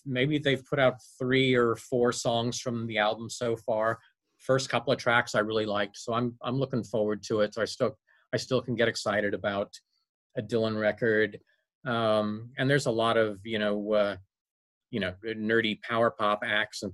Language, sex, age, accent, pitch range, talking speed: English, male, 40-59, American, 100-120 Hz, 195 wpm